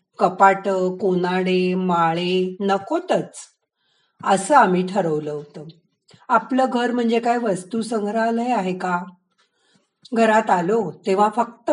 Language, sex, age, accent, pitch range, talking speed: Marathi, female, 40-59, native, 185-235 Hz, 100 wpm